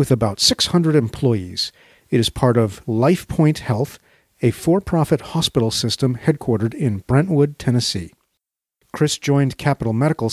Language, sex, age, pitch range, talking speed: English, male, 40-59, 115-145 Hz, 135 wpm